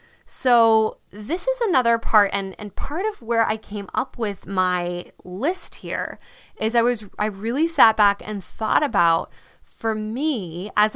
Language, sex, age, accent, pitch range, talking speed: English, female, 10-29, American, 190-245 Hz, 165 wpm